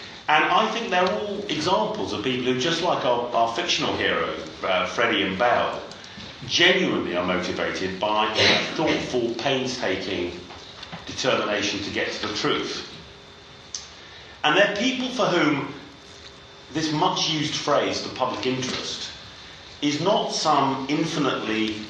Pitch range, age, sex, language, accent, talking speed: 115-155 Hz, 40-59, male, English, British, 130 wpm